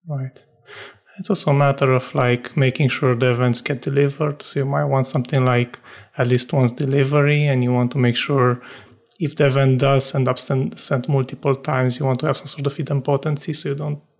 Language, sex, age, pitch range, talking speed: English, male, 30-49, 130-145 Hz, 210 wpm